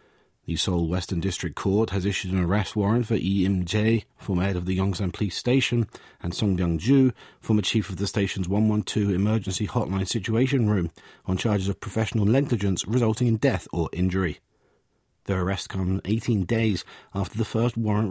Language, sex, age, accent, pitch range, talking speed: English, male, 40-59, British, 95-115 Hz, 170 wpm